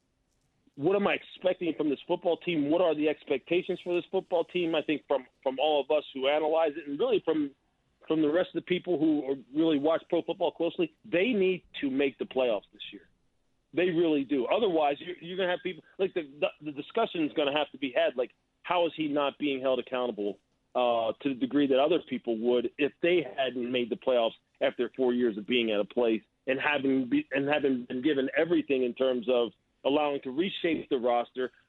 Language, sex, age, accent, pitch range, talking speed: English, male, 40-59, American, 135-180 Hz, 225 wpm